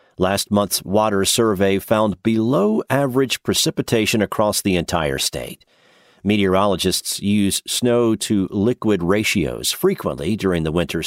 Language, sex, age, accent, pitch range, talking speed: English, male, 50-69, American, 90-130 Hz, 105 wpm